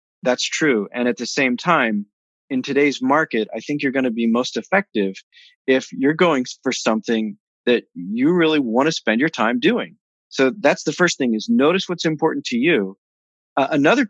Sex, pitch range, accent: male, 120-170 Hz, American